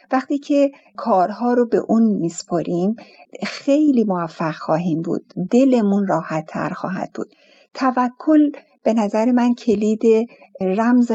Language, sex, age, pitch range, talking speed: Persian, female, 60-79, 195-250 Hz, 120 wpm